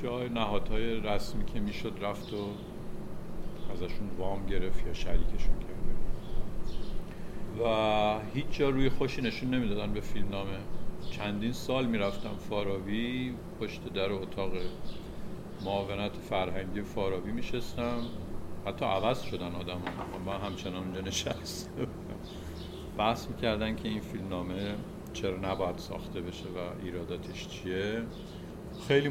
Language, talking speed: Persian, 115 wpm